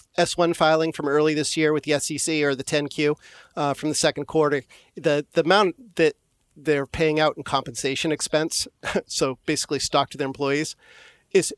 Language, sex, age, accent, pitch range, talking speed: English, male, 40-59, American, 140-160 Hz, 175 wpm